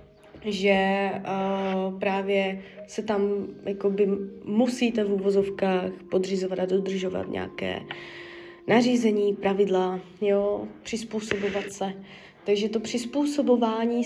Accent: native